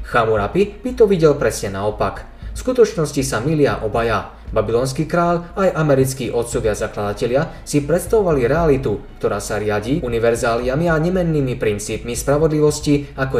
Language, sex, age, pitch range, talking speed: Slovak, male, 20-39, 110-155 Hz, 130 wpm